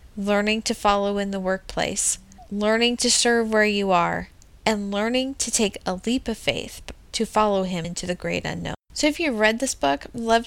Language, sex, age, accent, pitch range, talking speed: English, female, 10-29, American, 205-245 Hz, 195 wpm